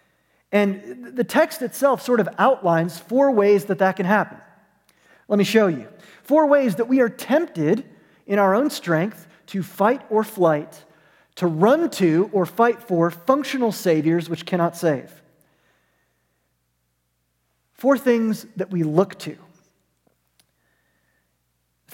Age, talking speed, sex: 30-49, 130 wpm, male